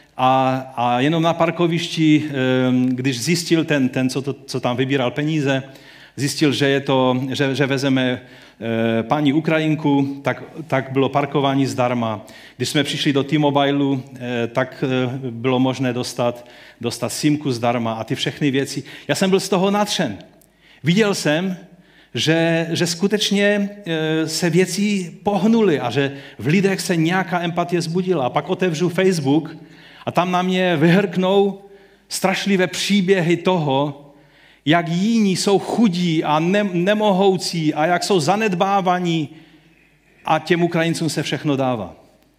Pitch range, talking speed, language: 130-180 Hz, 135 wpm, Czech